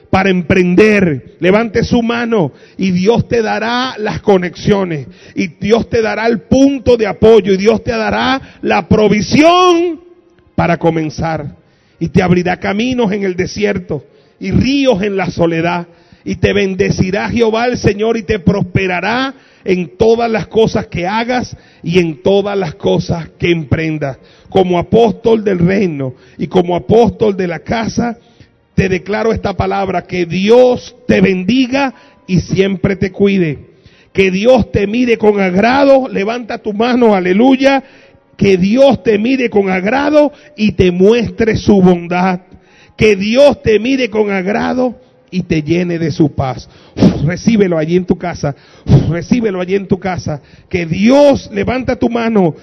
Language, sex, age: Spanish, male, 40-59